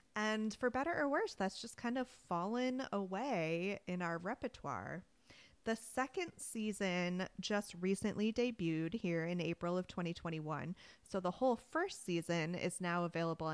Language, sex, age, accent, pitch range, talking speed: English, female, 30-49, American, 165-220 Hz, 145 wpm